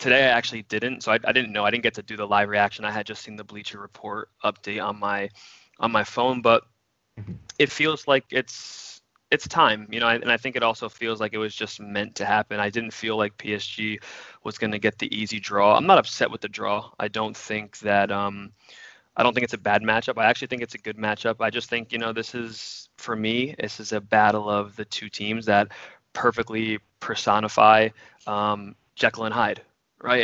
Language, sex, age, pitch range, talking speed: English, male, 20-39, 105-115 Hz, 225 wpm